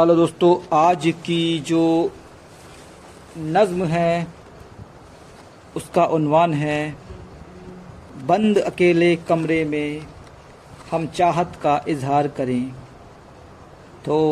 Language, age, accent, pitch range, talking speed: Hindi, 50-69, native, 160-185 Hz, 75 wpm